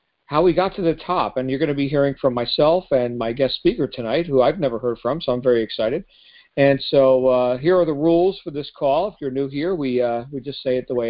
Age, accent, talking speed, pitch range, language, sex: 50-69, American, 270 wpm, 130-165 Hz, English, male